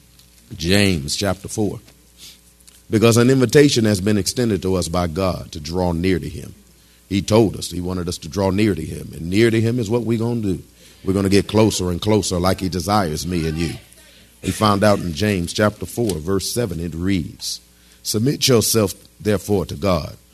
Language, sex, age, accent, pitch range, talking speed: English, male, 50-69, American, 90-110 Hz, 200 wpm